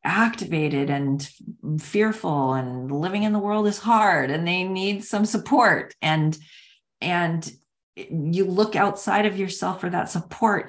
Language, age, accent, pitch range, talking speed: English, 40-59, American, 145-205 Hz, 140 wpm